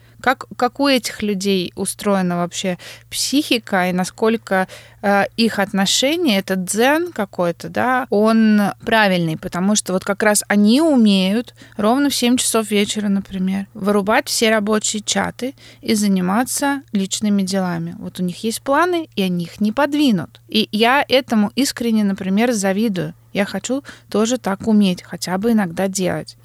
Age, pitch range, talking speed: 20-39, 185-235 Hz, 145 wpm